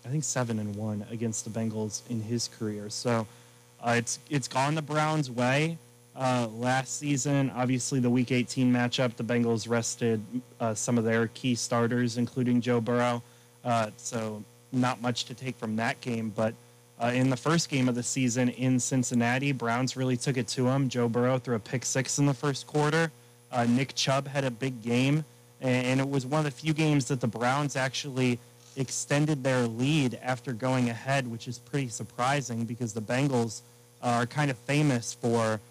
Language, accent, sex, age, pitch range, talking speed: English, American, male, 20-39, 115-130 Hz, 190 wpm